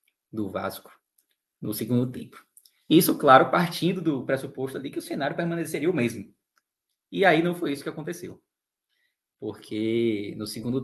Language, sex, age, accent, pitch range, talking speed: Portuguese, male, 20-39, Brazilian, 110-145 Hz, 150 wpm